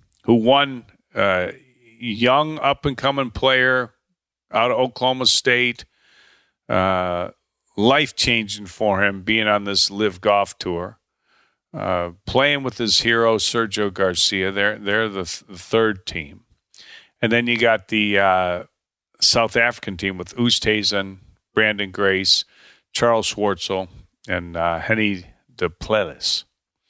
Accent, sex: American, male